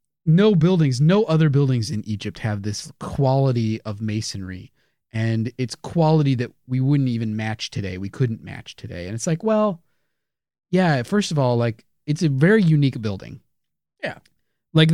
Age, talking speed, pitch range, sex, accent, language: 30-49, 165 wpm, 115-160 Hz, male, American, English